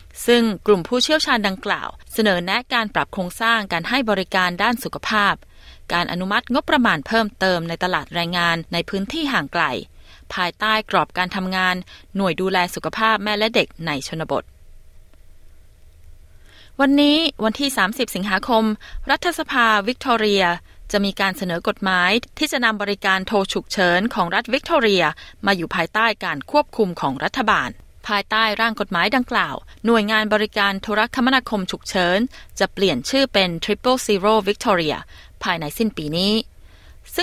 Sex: female